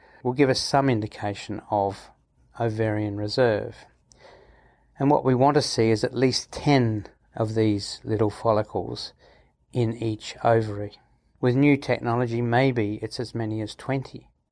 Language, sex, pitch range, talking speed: English, male, 110-125 Hz, 140 wpm